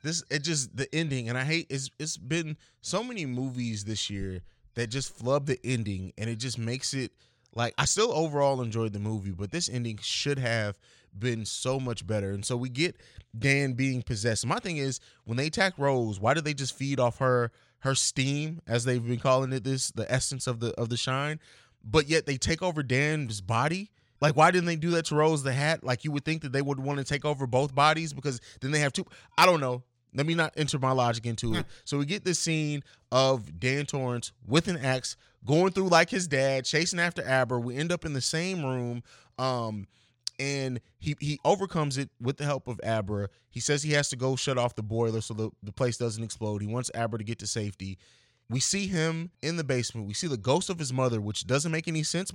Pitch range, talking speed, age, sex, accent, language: 120-155 Hz, 230 wpm, 20-39, male, American, English